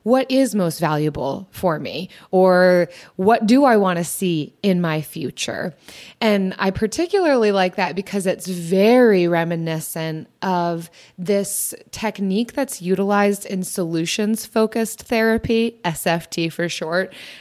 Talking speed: 125 wpm